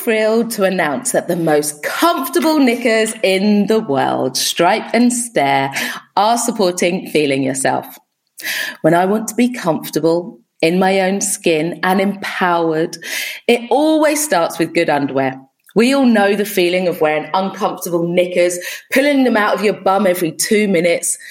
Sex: female